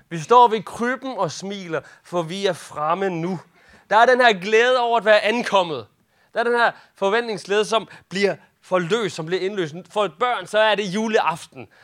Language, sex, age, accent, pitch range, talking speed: Danish, male, 30-49, native, 170-230 Hz, 195 wpm